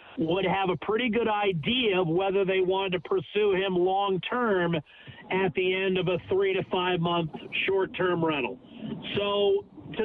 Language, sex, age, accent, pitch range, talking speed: English, male, 50-69, American, 170-205 Hz, 155 wpm